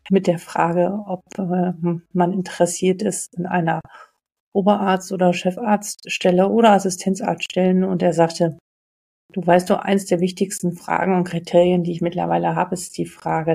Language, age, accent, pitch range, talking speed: German, 50-69, German, 170-195 Hz, 155 wpm